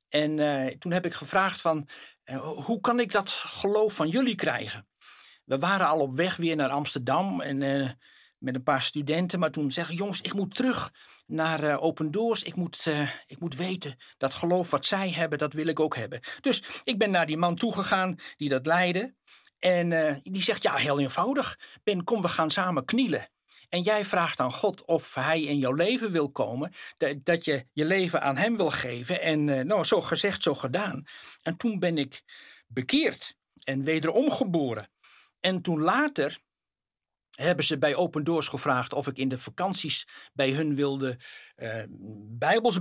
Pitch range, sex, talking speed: 145-190 Hz, male, 185 wpm